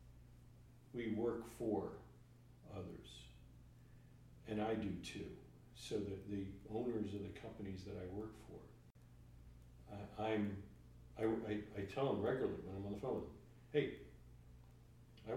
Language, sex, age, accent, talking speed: English, male, 50-69, American, 125 wpm